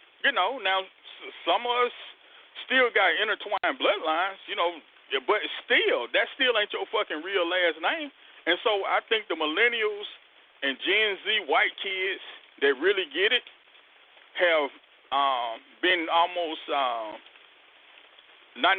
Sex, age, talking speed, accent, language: male, 40-59, 135 wpm, American, English